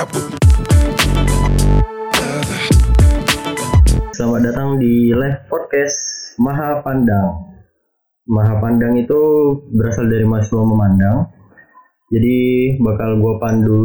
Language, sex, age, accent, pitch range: Indonesian, male, 20-39, native, 105-140 Hz